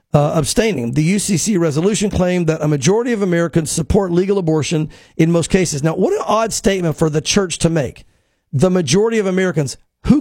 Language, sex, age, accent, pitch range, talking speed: English, male, 50-69, American, 160-205 Hz, 190 wpm